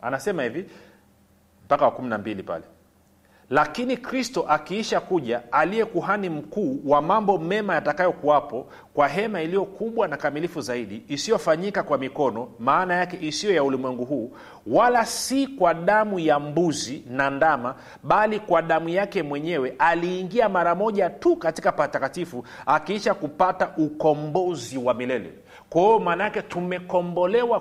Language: Swahili